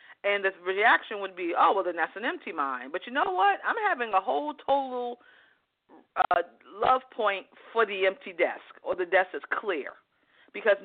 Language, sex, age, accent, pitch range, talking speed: English, female, 40-59, American, 185-250 Hz, 190 wpm